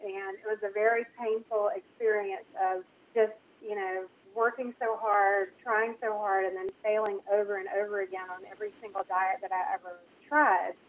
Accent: American